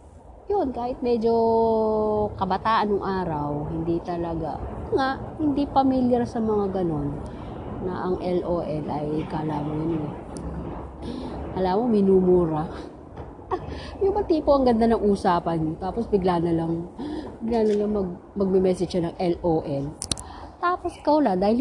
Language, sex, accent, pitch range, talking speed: English, female, Filipino, 155-225 Hz, 130 wpm